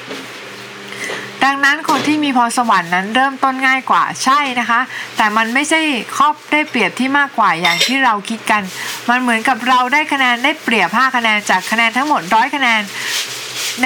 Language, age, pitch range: Thai, 20-39, 210-265 Hz